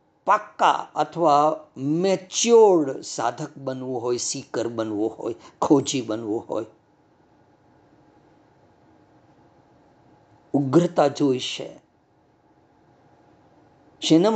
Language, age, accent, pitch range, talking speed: Gujarati, 50-69, native, 140-200 Hz, 45 wpm